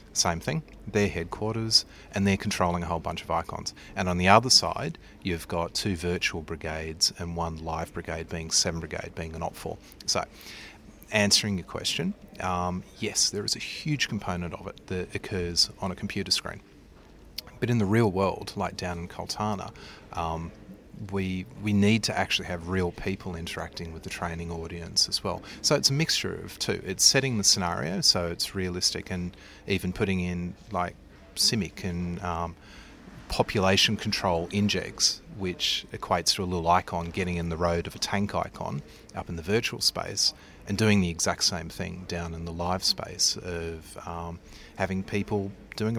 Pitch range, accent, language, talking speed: 85-105 Hz, Australian, English, 175 wpm